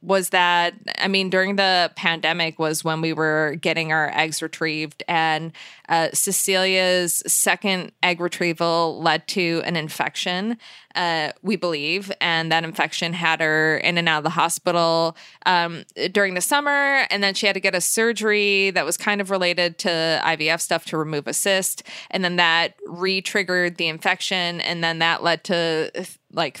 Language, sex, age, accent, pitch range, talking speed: English, female, 20-39, American, 160-190 Hz, 170 wpm